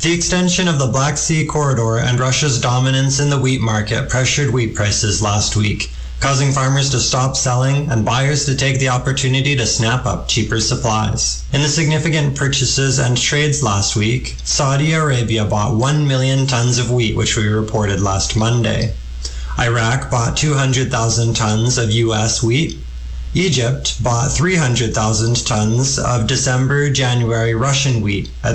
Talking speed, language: 150 wpm, English